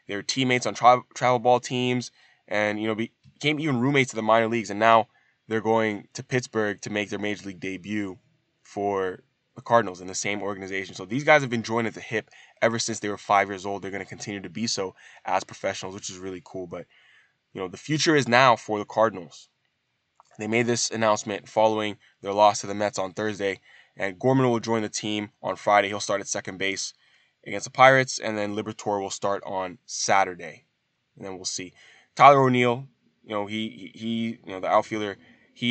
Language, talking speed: English, 210 wpm